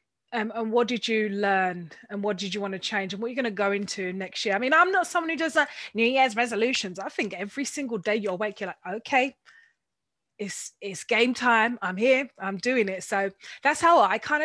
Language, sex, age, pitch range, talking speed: English, female, 30-49, 195-240 Hz, 235 wpm